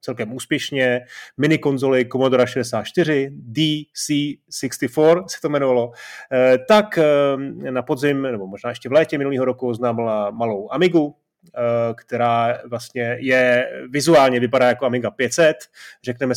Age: 30-49